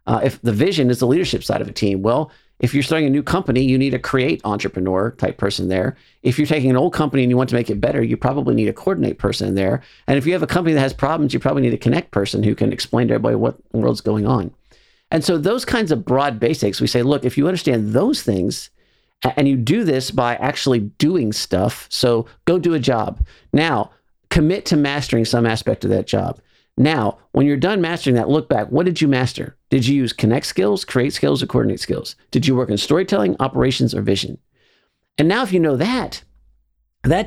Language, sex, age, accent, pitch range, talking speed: English, male, 50-69, American, 115-155 Hz, 235 wpm